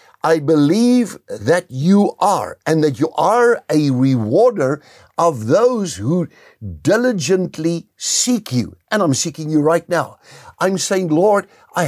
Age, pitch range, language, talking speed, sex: 60-79, 135-220 Hz, English, 135 wpm, male